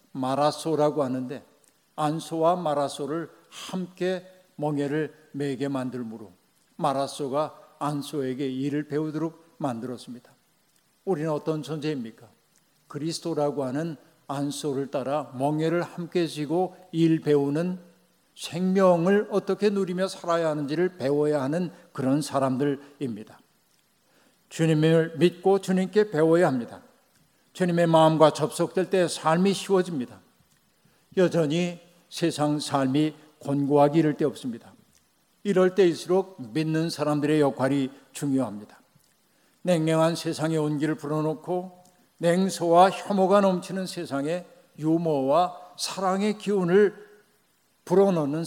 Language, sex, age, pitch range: Korean, male, 50-69, 145-180 Hz